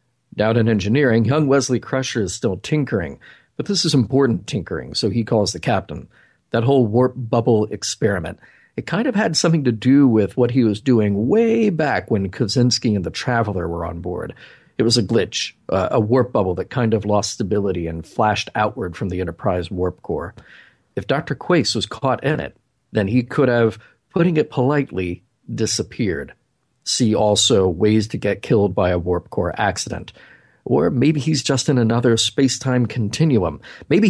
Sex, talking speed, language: male, 180 wpm, English